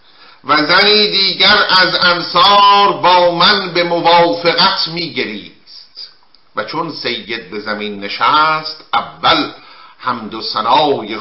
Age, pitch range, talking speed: 50-69, 145-200 Hz, 100 wpm